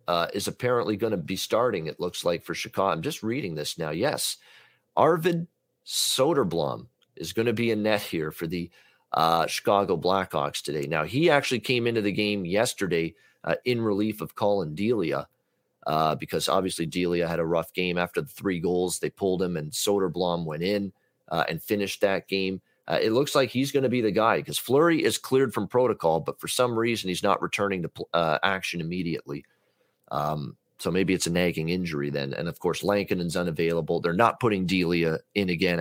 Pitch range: 90-115 Hz